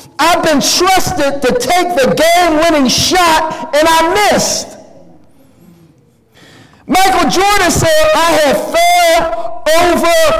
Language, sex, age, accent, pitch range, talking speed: English, male, 50-69, American, 300-390 Hz, 110 wpm